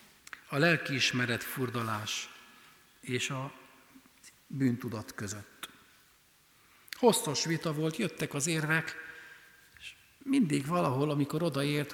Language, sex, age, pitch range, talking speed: Hungarian, male, 60-79, 120-170 Hz, 85 wpm